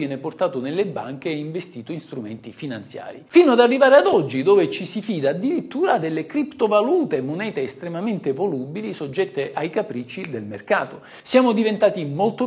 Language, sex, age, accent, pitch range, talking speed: Italian, male, 50-69, native, 140-235 Hz, 155 wpm